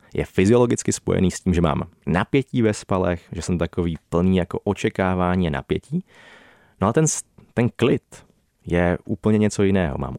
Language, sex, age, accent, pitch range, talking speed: Czech, male, 30-49, native, 85-105 Hz, 160 wpm